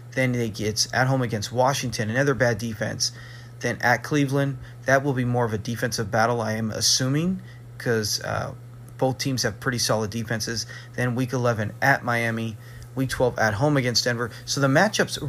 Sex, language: male, English